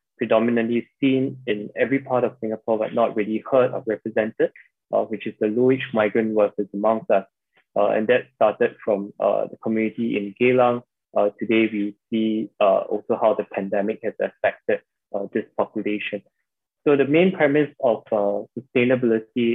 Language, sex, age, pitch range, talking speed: English, male, 20-39, 110-125 Hz, 165 wpm